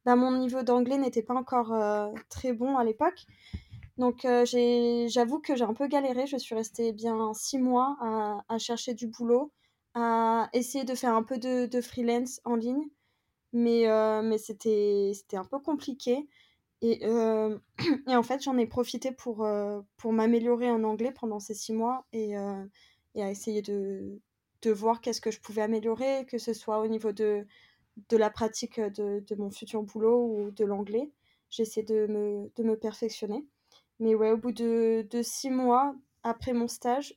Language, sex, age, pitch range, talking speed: French, female, 20-39, 220-245 Hz, 185 wpm